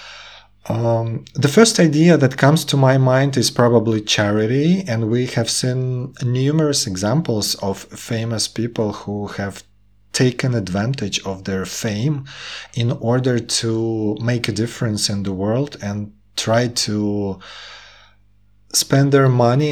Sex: male